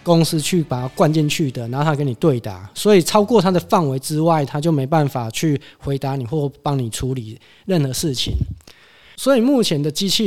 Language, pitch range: Chinese, 130-180 Hz